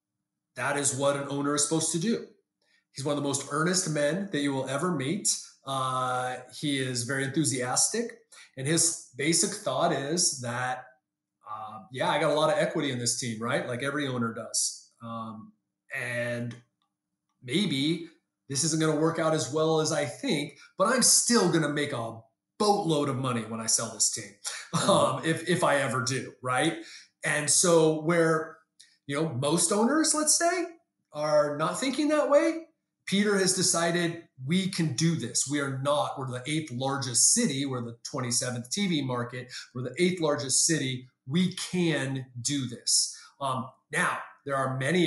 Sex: male